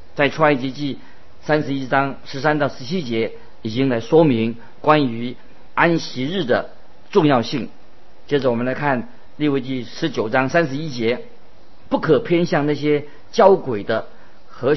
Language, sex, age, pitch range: Chinese, male, 50-69, 120-150 Hz